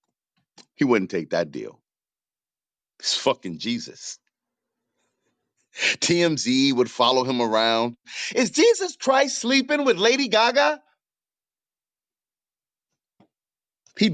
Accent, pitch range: American, 135-210 Hz